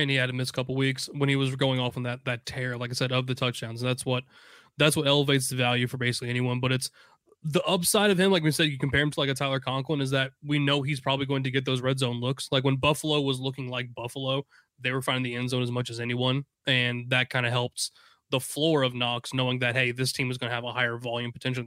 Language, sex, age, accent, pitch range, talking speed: English, male, 20-39, American, 125-150 Hz, 285 wpm